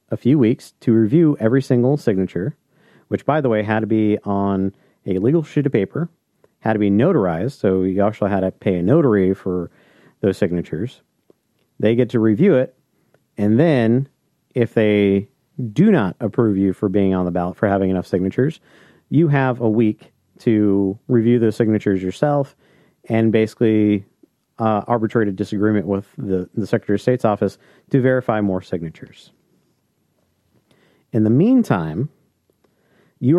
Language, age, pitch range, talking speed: English, 40-59, 100-130 Hz, 160 wpm